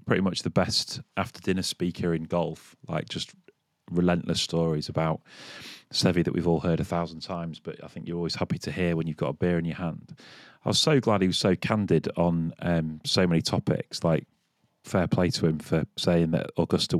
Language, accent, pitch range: English, British, 85-110 Hz